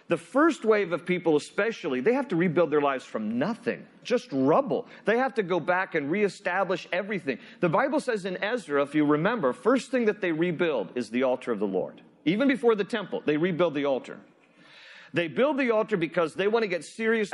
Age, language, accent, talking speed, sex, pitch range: 40-59, English, American, 210 wpm, male, 160-225 Hz